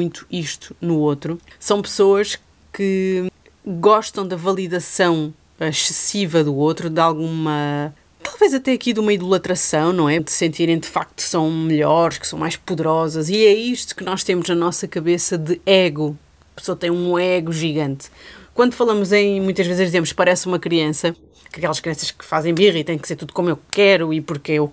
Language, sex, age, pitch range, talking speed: Portuguese, female, 30-49, 160-190 Hz, 185 wpm